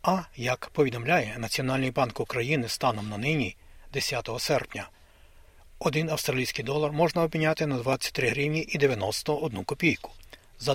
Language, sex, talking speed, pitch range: Ukrainian, male, 130 wpm, 115-155 Hz